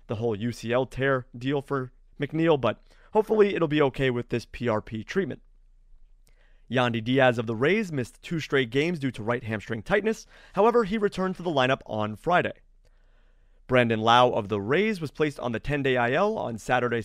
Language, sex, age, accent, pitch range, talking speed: English, male, 30-49, American, 115-170 Hz, 180 wpm